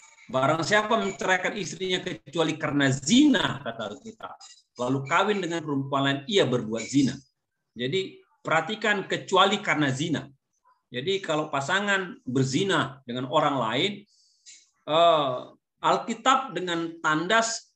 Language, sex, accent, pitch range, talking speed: Indonesian, male, native, 140-210 Hz, 110 wpm